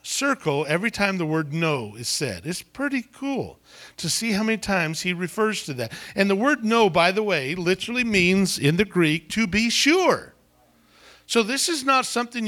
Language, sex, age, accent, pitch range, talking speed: English, male, 50-69, American, 165-240 Hz, 190 wpm